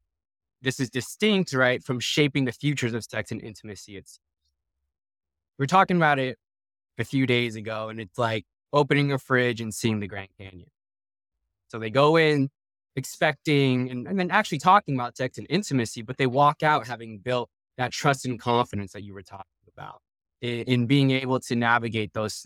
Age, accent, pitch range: 20-39, American, 100-125 Hz